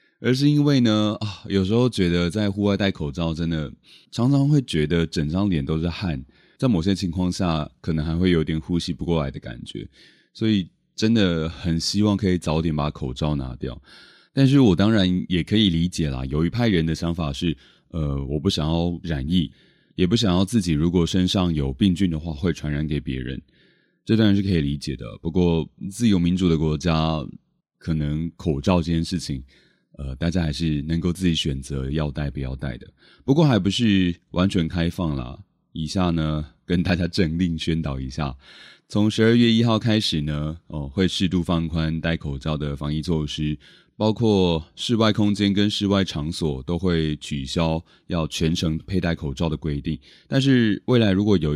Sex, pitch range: male, 75-100 Hz